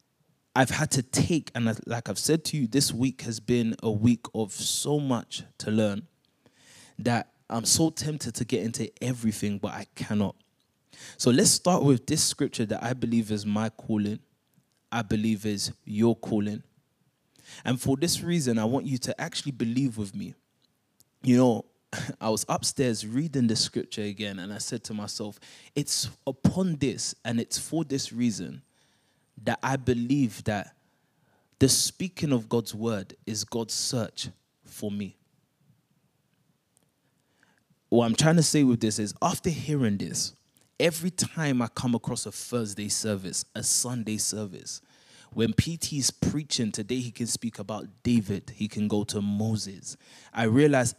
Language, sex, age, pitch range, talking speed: English, male, 20-39, 110-135 Hz, 160 wpm